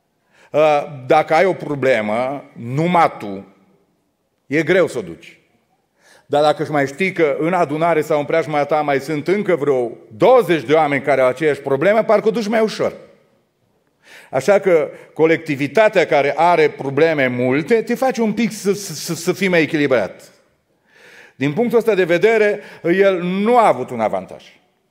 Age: 40-59